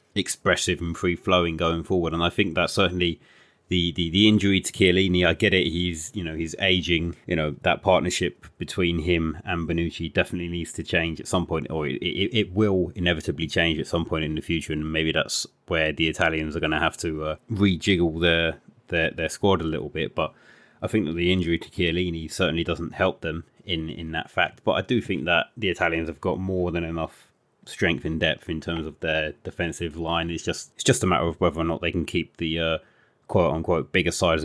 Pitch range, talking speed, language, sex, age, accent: 80-100 Hz, 220 wpm, English, male, 30-49, British